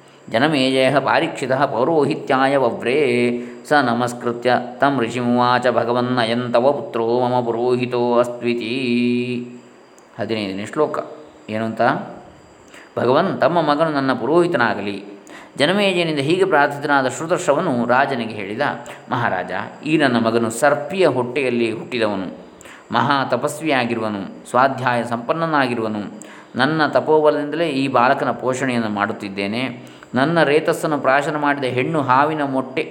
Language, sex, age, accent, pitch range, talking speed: Kannada, male, 20-39, native, 115-145 Hz, 95 wpm